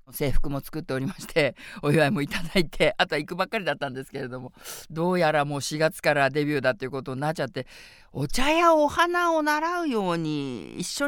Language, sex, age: Japanese, female, 50-69